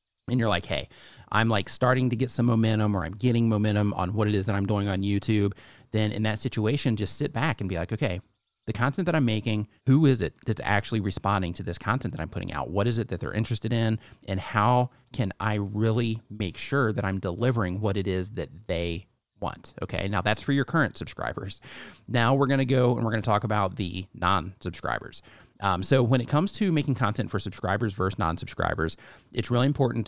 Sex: male